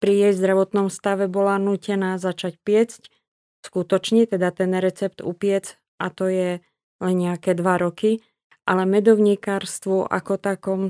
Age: 20-39